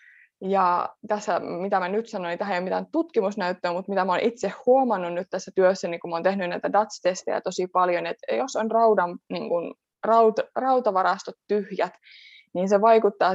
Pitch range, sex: 185-225 Hz, female